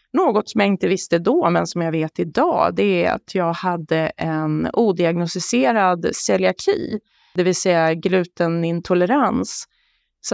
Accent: native